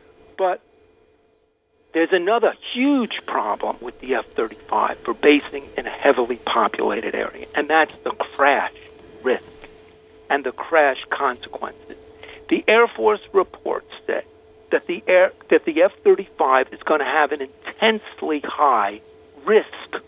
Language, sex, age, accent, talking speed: English, male, 50-69, American, 125 wpm